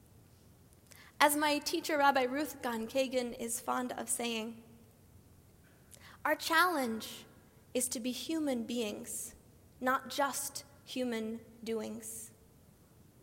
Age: 10-29